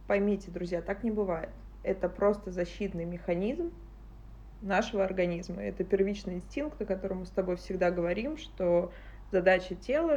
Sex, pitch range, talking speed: female, 180-215 Hz, 140 wpm